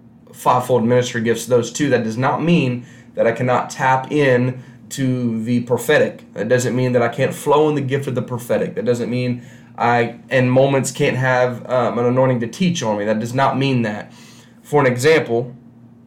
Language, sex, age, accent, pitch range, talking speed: English, male, 20-39, American, 120-130 Hz, 200 wpm